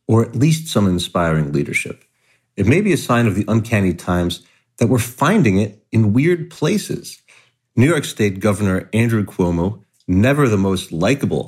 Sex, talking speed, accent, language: male, 165 wpm, American, English